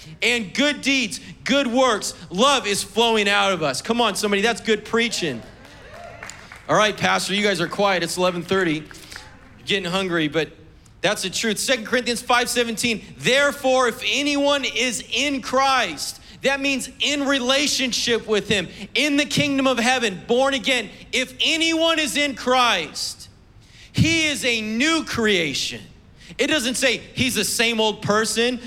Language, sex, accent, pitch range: English, male, American, 195-260 Hz